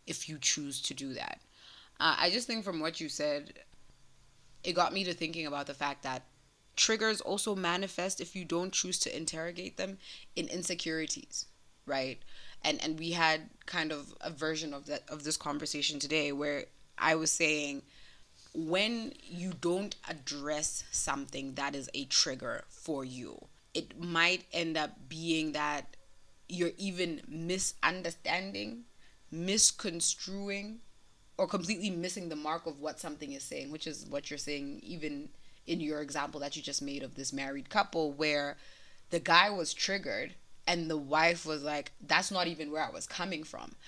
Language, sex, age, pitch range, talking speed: English, female, 20-39, 145-180 Hz, 165 wpm